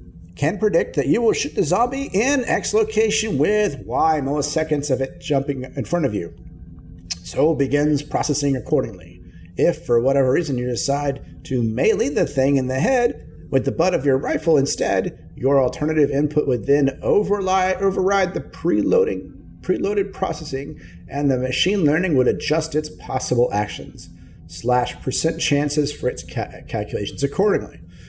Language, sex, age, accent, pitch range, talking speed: English, male, 50-69, American, 130-175 Hz, 155 wpm